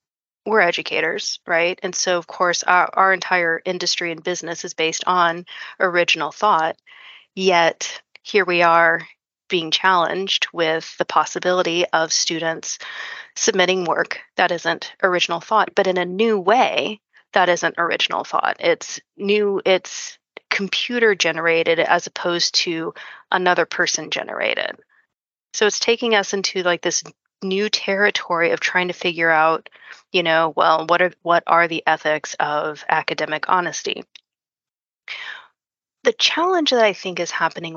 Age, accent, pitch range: 30-49, American, 165-195 Hz